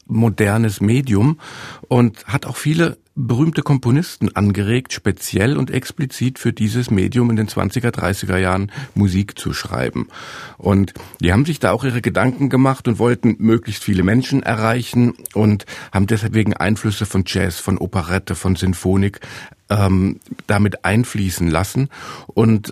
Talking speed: 135 wpm